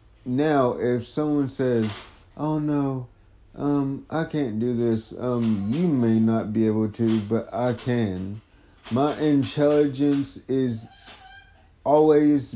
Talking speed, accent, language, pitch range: 120 wpm, American, English, 110-140 Hz